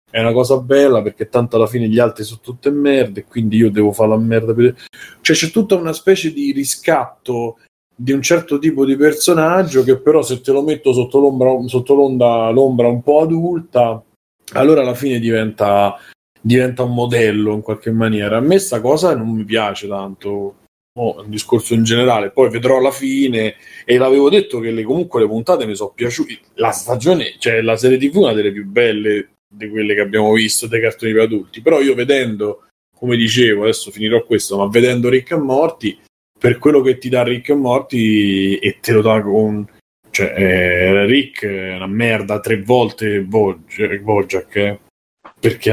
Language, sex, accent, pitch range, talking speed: Italian, male, native, 110-130 Hz, 190 wpm